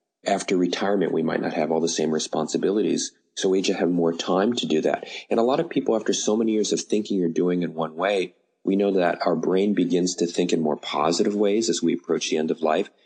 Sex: male